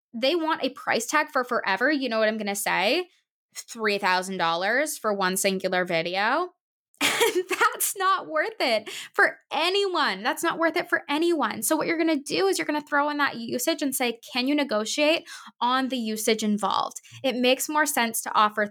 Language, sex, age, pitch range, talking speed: English, female, 20-39, 205-300 Hz, 190 wpm